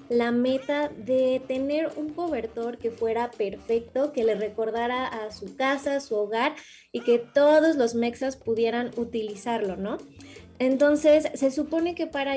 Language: Spanish